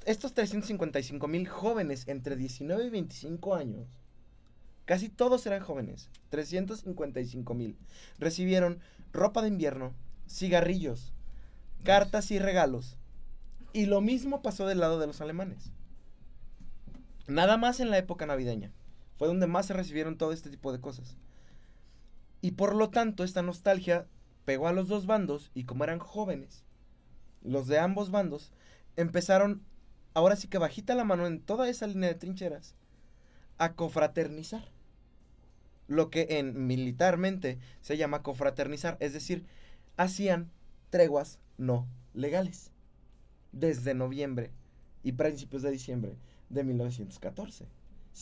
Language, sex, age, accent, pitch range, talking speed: Spanish, male, 20-39, Mexican, 140-200 Hz, 130 wpm